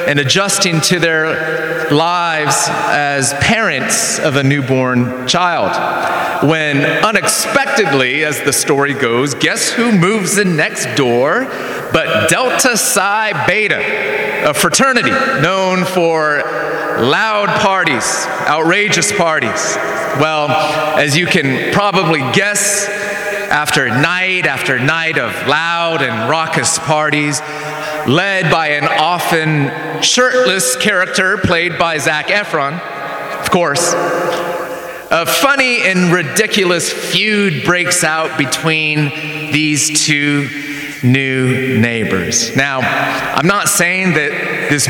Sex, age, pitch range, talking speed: male, 30-49, 150-195 Hz, 105 wpm